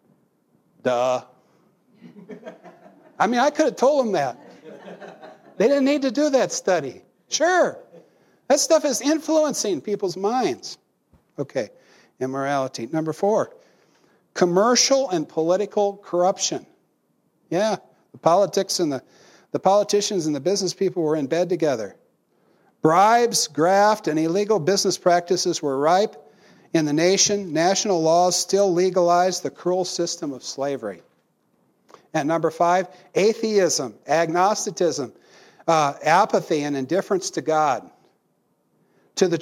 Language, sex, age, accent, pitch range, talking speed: English, male, 60-79, American, 155-200 Hz, 120 wpm